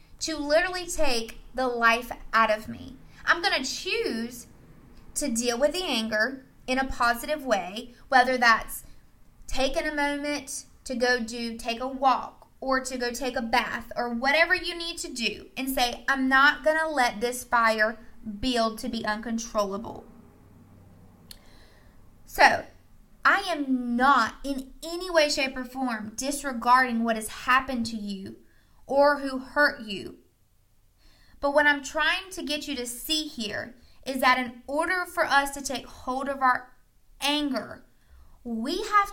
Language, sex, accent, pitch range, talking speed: English, female, American, 225-280 Hz, 155 wpm